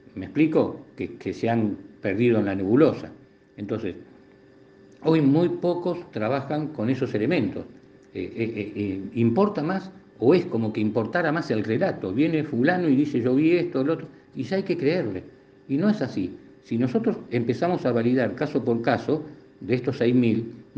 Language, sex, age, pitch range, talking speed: Spanish, male, 50-69, 110-150 Hz, 175 wpm